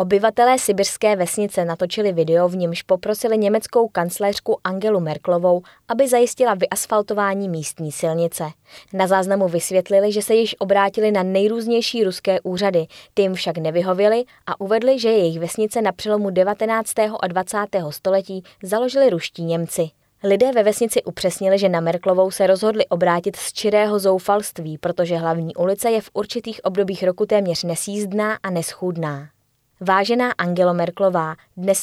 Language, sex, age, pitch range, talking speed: Czech, female, 20-39, 175-215 Hz, 140 wpm